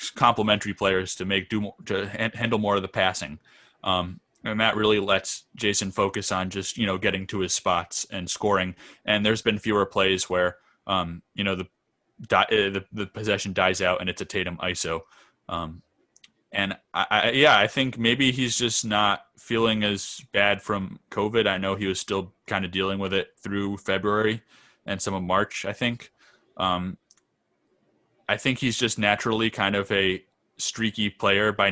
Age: 20-39